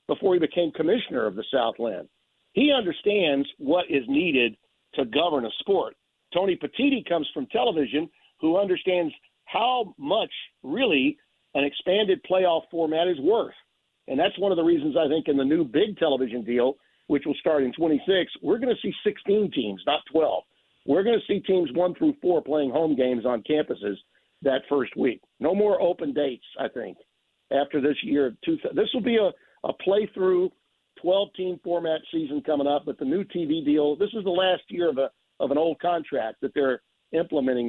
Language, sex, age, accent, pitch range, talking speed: English, male, 50-69, American, 145-205 Hz, 180 wpm